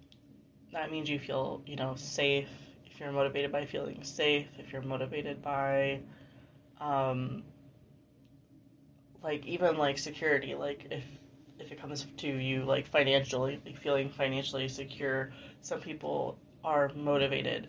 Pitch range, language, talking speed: 135-150 Hz, English, 130 wpm